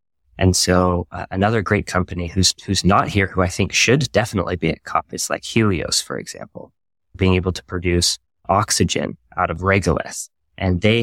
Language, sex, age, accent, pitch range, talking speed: English, male, 20-39, American, 85-100 Hz, 180 wpm